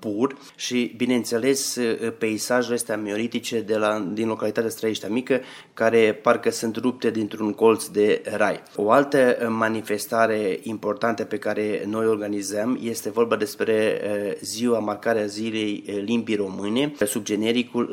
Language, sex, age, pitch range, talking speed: Romanian, male, 20-39, 105-115 Hz, 125 wpm